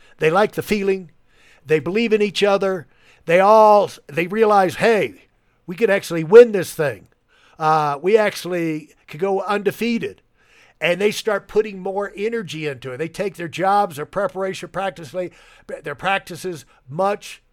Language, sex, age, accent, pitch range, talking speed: English, male, 60-79, American, 160-215 Hz, 150 wpm